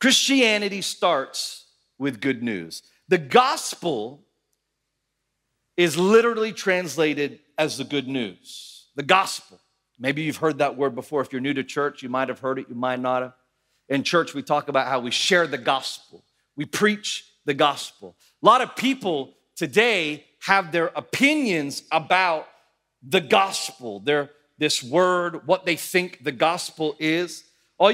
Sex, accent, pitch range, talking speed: male, American, 150-220 Hz, 150 wpm